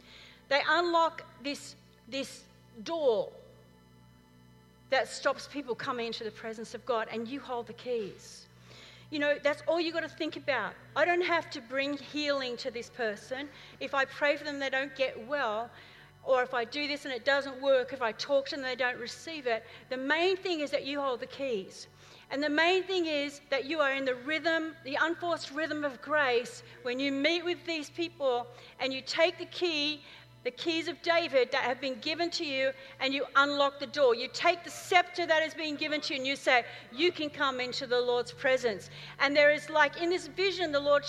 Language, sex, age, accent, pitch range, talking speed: English, female, 40-59, Australian, 265-325 Hz, 210 wpm